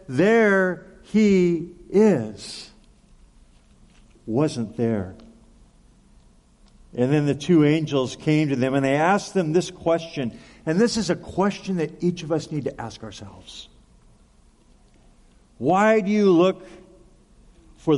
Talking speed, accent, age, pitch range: 125 wpm, American, 50-69, 145-205 Hz